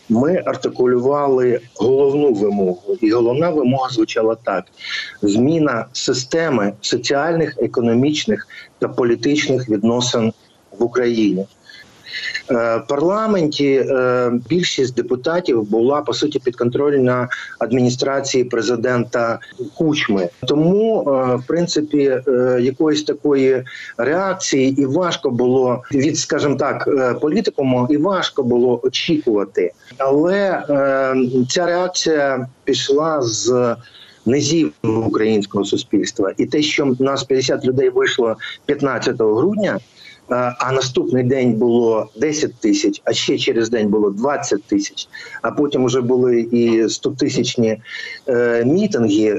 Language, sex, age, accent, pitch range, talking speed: Ukrainian, male, 50-69, native, 120-155 Hz, 105 wpm